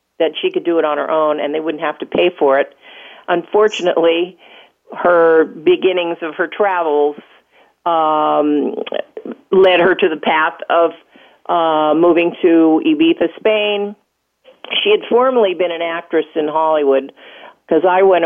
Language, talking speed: English, 150 wpm